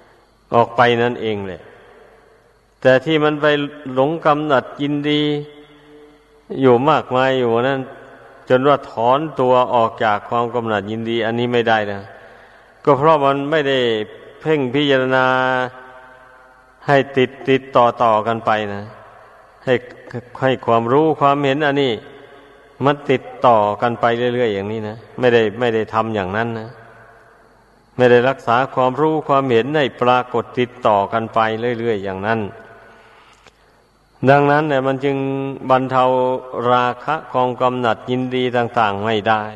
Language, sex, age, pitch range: Thai, male, 50-69, 115-135 Hz